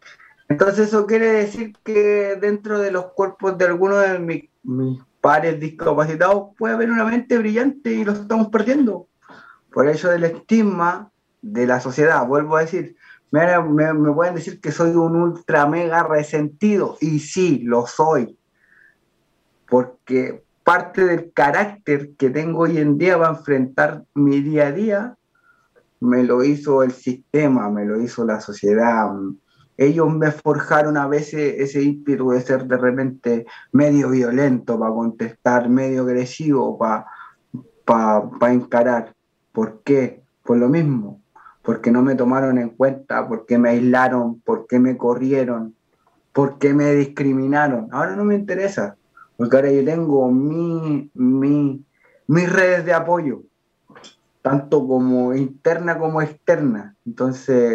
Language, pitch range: Spanish, 125-175 Hz